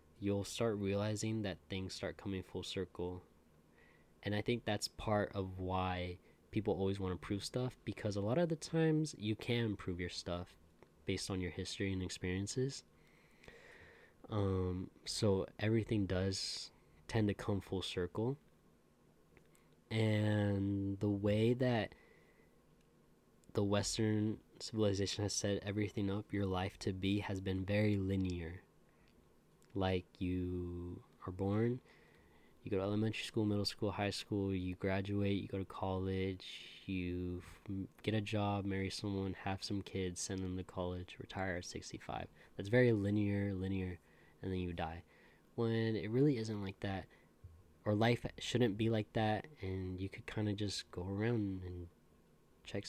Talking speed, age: 150 wpm, 20-39